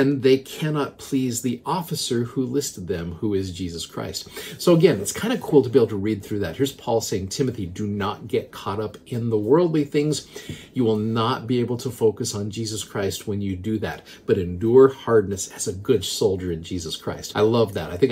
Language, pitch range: English, 105-145 Hz